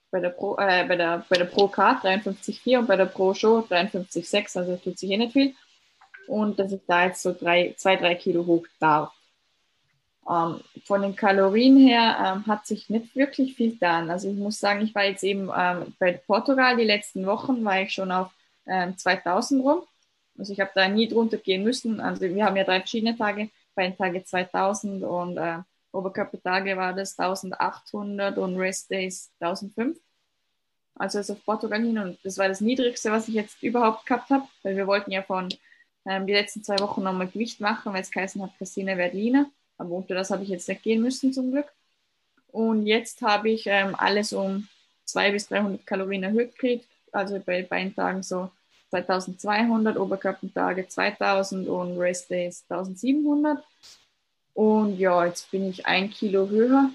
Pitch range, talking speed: 185-220 Hz, 180 wpm